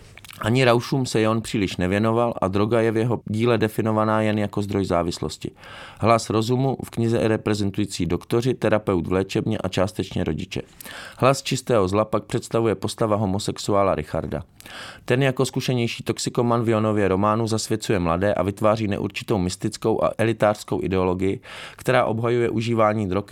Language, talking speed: English, 150 wpm